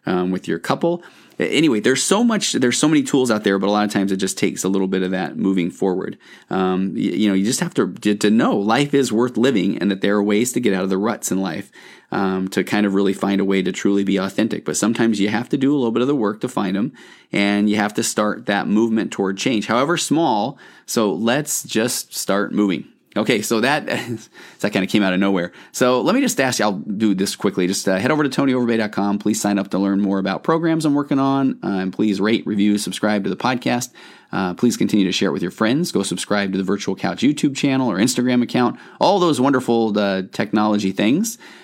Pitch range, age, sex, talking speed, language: 95-115 Hz, 30-49, male, 245 wpm, English